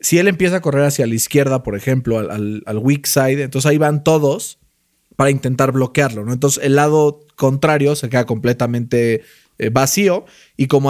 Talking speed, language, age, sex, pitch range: 185 wpm, Spanish, 30-49, male, 125-160 Hz